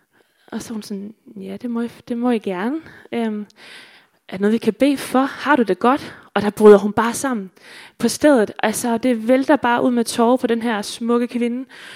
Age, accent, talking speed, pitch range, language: 20-39, native, 220 wpm, 215-250 Hz, Danish